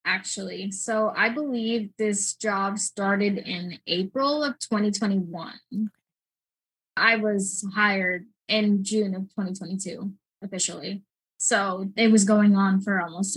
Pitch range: 200-230 Hz